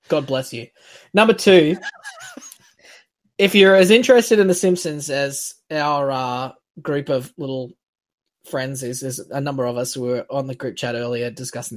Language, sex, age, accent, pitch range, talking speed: English, male, 20-39, Australian, 130-170 Hz, 170 wpm